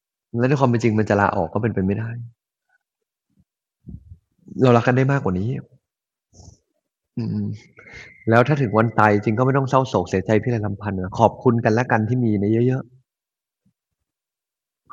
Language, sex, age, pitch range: Thai, male, 20-39, 110-130 Hz